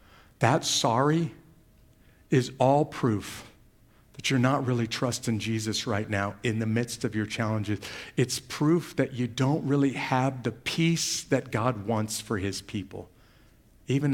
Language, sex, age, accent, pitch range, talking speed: English, male, 50-69, American, 110-140 Hz, 150 wpm